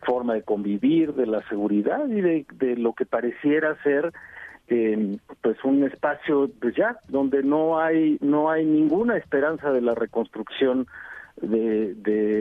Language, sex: Spanish, male